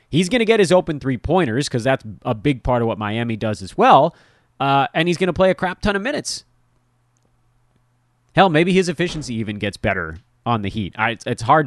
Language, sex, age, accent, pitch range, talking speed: English, male, 30-49, American, 115-165 Hz, 215 wpm